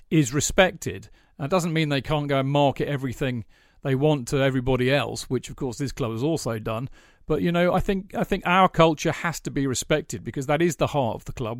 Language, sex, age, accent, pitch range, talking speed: English, male, 40-59, British, 130-155 Hz, 235 wpm